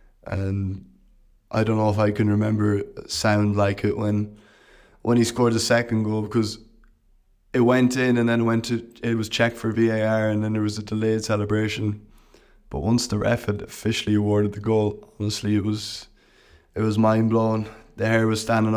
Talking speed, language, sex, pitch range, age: 185 wpm, English, male, 105-115 Hz, 20-39